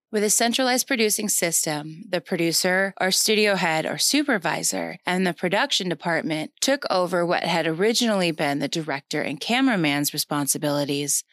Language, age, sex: English, 20-39, female